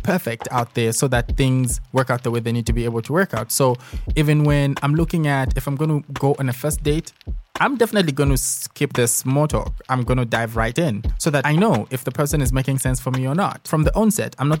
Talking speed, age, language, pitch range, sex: 265 wpm, 20-39, English, 120-150 Hz, male